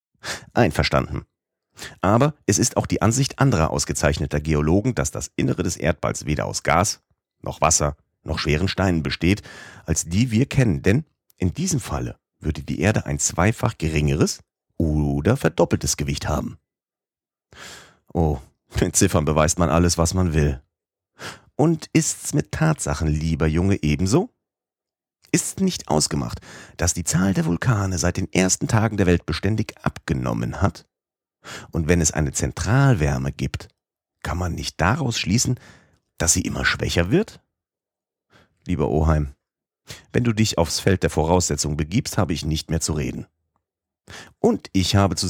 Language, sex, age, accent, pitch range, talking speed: German, male, 40-59, German, 75-110 Hz, 145 wpm